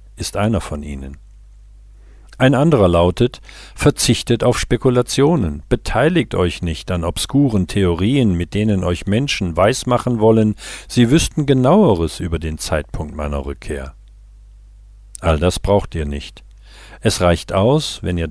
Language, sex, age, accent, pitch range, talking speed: German, male, 50-69, German, 85-105 Hz, 130 wpm